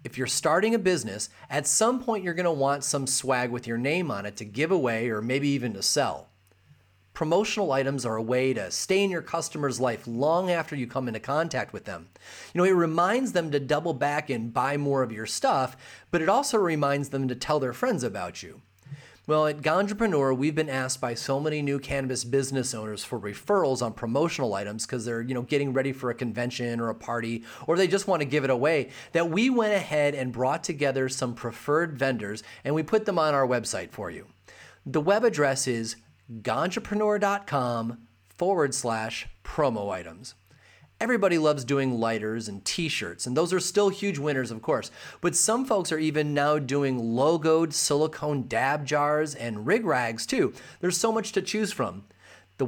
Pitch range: 120-165 Hz